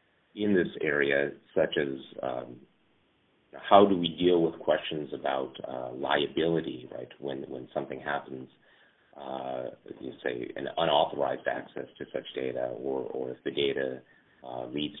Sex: male